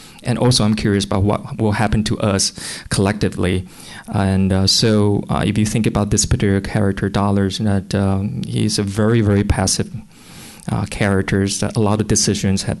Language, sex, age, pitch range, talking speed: English, male, 20-39, 95-105 Hz, 175 wpm